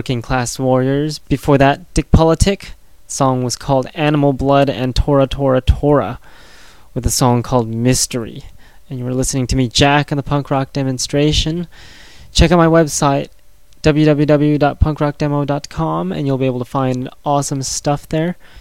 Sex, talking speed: male, 155 wpm